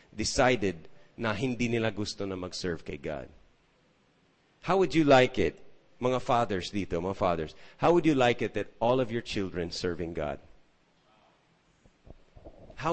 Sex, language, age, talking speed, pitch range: male, English, 30-49, 150 wpm, 95-130 Hz